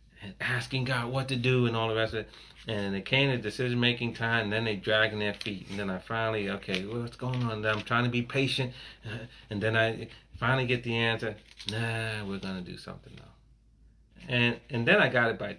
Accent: American